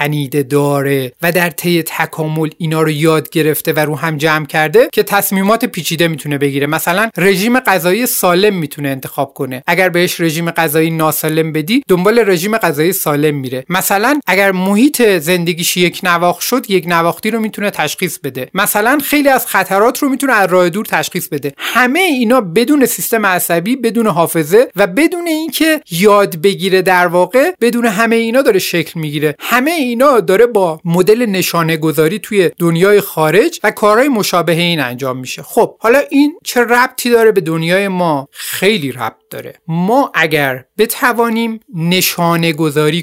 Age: 30-49